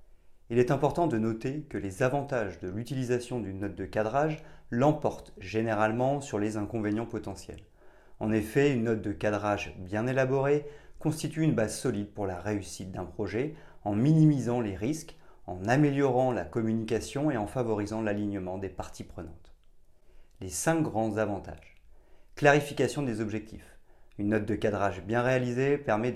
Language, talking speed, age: French, 150 wpm, 30-49